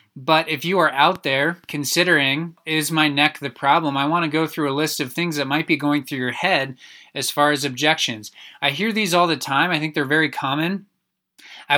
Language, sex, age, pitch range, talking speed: English, male, 20-39, 135-155 Hz, 225 wpm